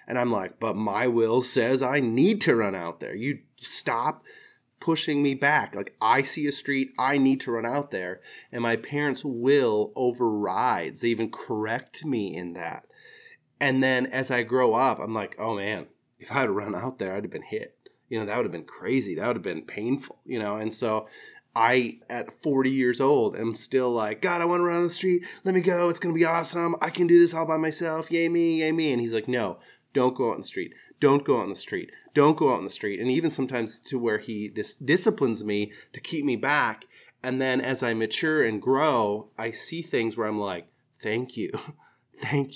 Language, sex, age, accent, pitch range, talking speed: English, male, 30-49, American, 115-155 Hz, 225 wpm